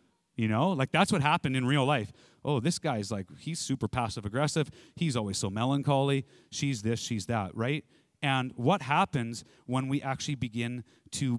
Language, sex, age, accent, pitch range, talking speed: English, male, 30-49, American, 120-160 Hz, 185 wpm